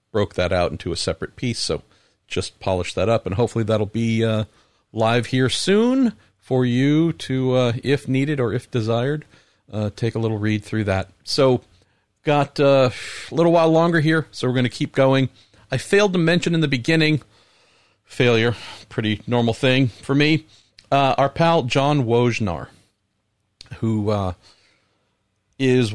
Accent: American